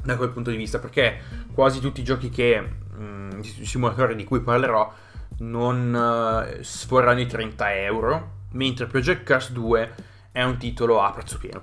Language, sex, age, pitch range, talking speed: Italian, male, 20-39, 100-125 Hz, 170 wpm